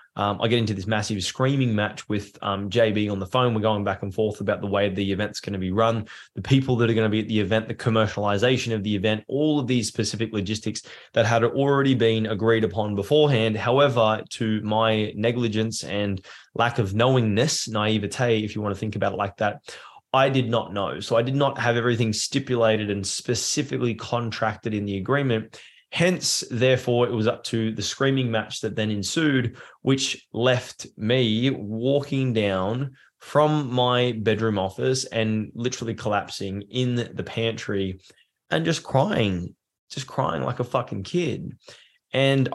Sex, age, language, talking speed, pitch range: male, 20-39, English, 180 wpm, 105-125 Hz